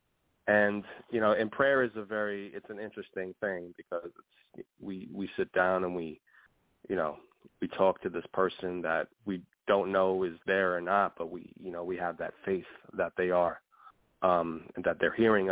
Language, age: English, 30-49